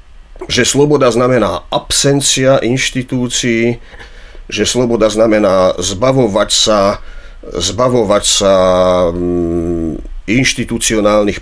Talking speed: 70 wpm